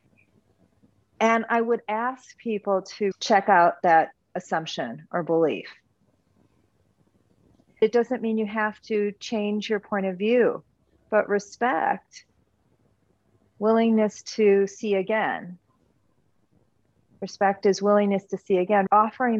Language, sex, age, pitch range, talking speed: English, female, 40-59, 180-215 Hz, 110 wpm